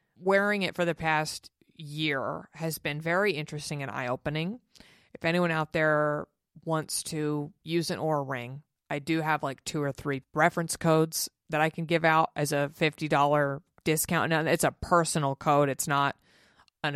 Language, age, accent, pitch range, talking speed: English, 30-49, American, 145-170 Hz, 175 wpm